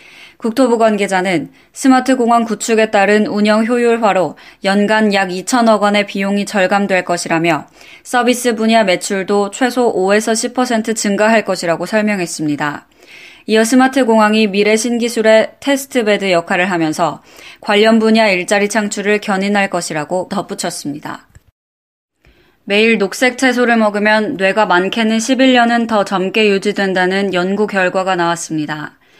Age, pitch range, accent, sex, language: 20-39, 190-235 Hz, native, female, Korean